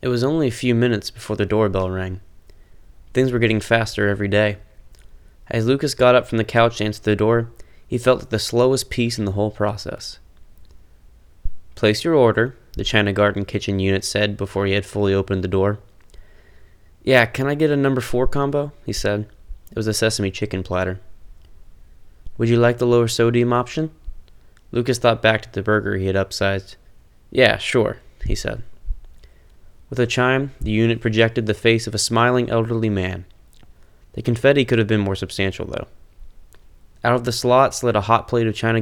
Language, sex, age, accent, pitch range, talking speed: English, male, 20-39, American, 95-115 Hz, 185 wpm